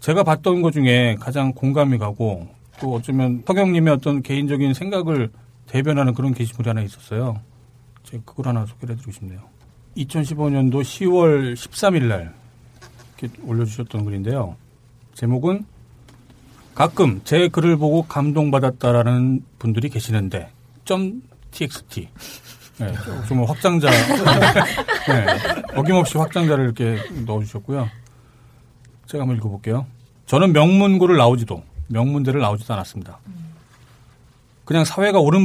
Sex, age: male, 40-59